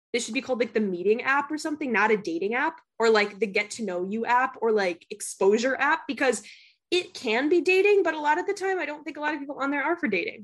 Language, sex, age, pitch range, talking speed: English, female, 20-39, 210-295 Hz, 280 wpm